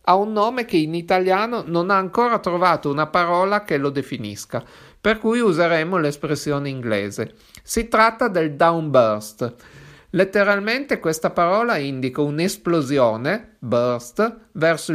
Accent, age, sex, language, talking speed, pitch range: native, 50-69, male, Italian, 125 wpm, 145-200 Hz